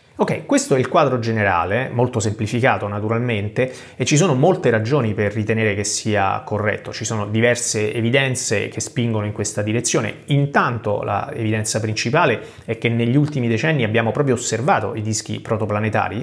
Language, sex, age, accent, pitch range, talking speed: Italian, male, 30-49, native, 105-125 Hz, 160 wpm